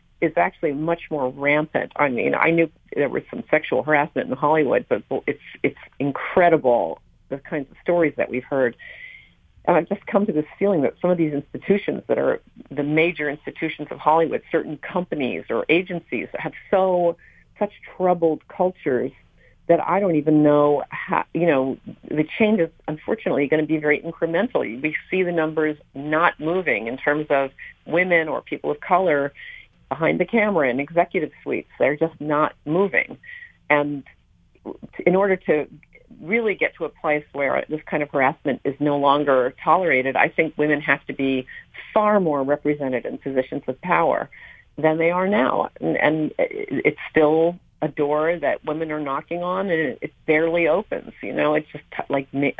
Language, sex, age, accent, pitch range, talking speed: English, female, 40-59, American, 145-175 Hz, 170 wpm